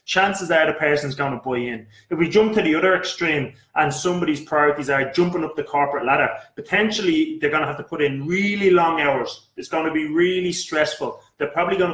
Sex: male